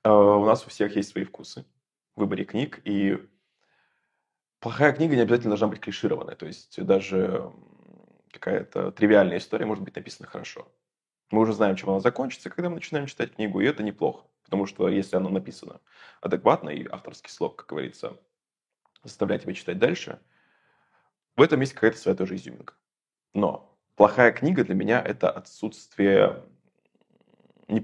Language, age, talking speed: Russian, 20-39, 155 wpm